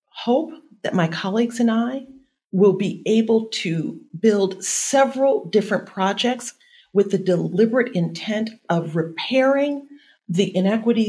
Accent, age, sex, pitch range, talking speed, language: American, 50-69, female, 175-235 Hz, 120 wpm, English